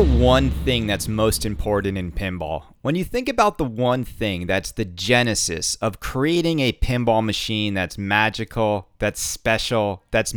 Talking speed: 155 wpm